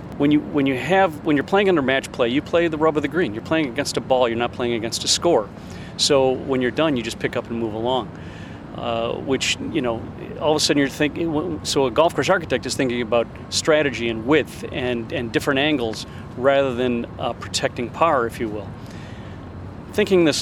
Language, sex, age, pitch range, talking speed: English, male, 40-59, 115-150 Hz, 220 wpm